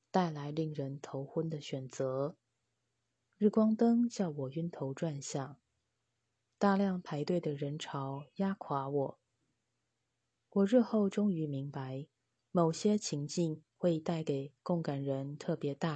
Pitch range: 135-175 Hz